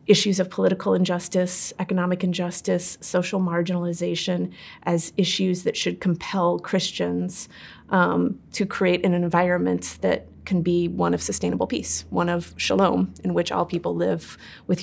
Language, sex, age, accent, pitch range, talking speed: English, female, 30-49, American, 170-195 Hz, 140 wpm